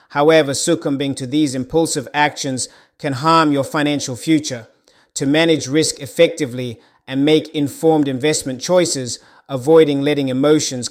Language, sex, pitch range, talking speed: English, male, 135-155 Hz, 125 wpm